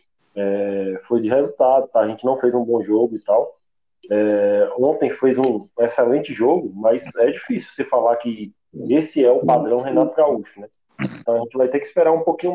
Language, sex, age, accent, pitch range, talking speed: Portuguese, male, 20-39, Brazilian, 115-170 Hz, 200 wpm